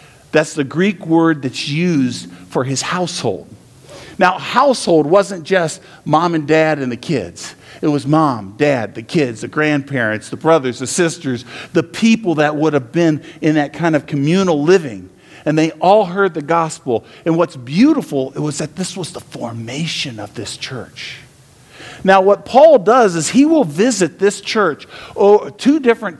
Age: 50-69